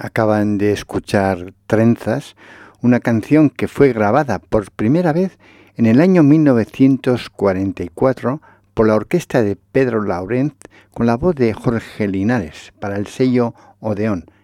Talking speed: 135 wpm